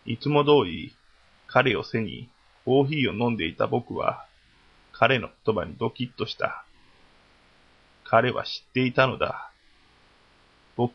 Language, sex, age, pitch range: Japanese, male, 20-39, 115-135 Hz